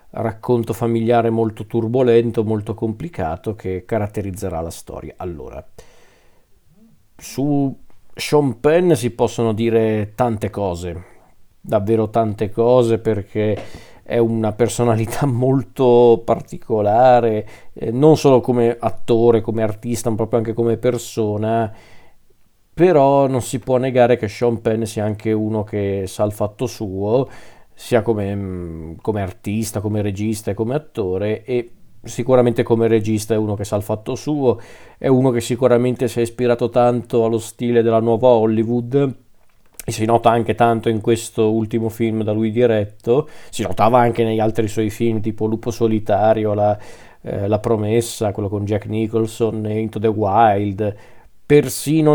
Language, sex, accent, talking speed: Italian, male, native, 140 wpm